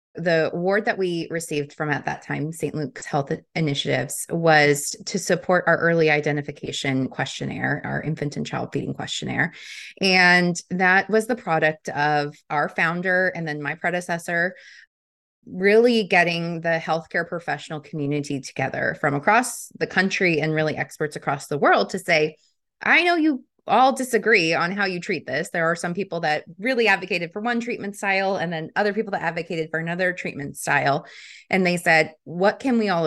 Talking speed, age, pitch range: 170 wpm, 20-39, 155-195 Hz